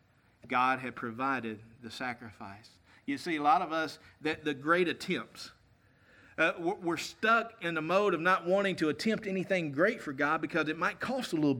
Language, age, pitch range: English, 50-69, 180-290 Hz